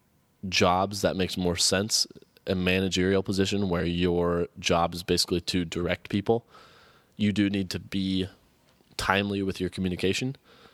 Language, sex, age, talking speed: English, male, 20-39, 140 wpm